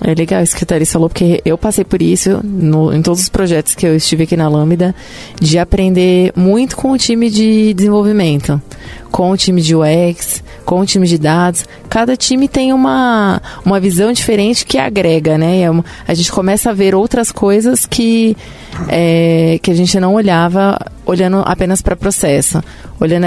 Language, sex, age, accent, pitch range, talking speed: Portuguese, female, 20-39, Brazilian, 165-205 Hz, 185 wpm